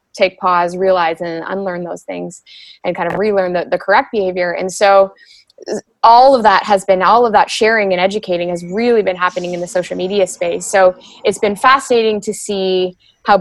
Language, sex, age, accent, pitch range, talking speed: English, female, 20-39, American, 185-215 Hz, 195 wpm